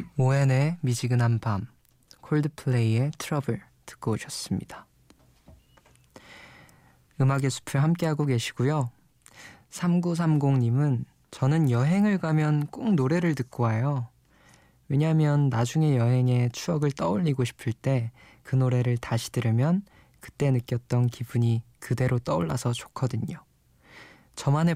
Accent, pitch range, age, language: native, 120-150 Hz, 20-39, Korean